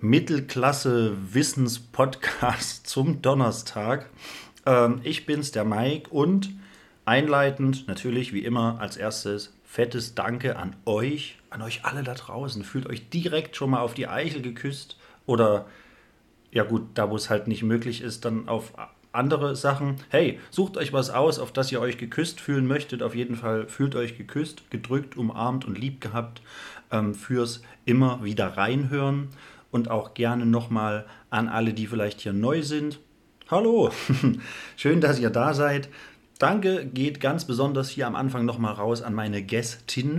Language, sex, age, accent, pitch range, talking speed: German, male, 30-49, German, 115-140 Hz, 150 wpm